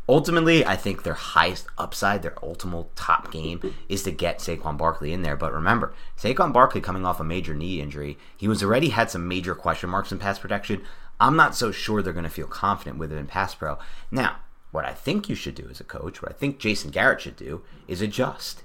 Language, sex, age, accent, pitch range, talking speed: English, male, 30-49, American, 80-100 Hz, 230 wpm